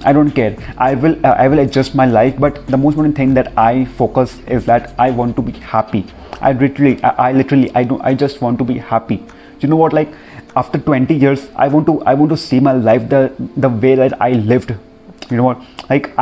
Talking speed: 240 wpm